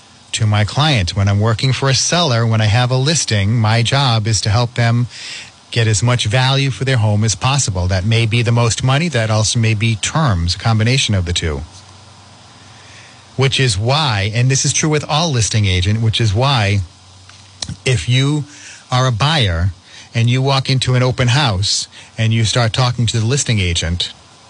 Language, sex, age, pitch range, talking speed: English, male, 40-59, 105-125 Hz, 195 wpm